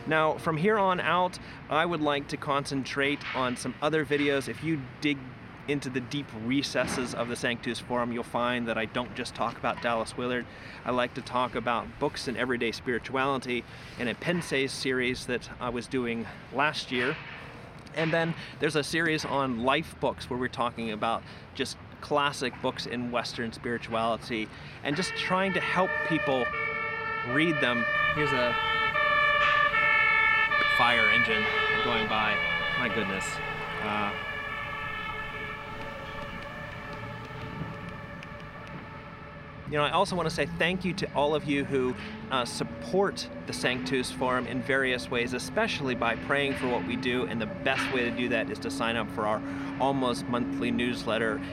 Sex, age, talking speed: male, 30-49, 155 wpm